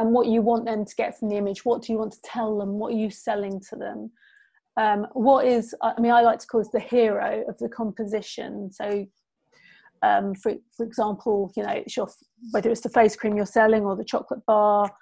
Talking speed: 230 wpm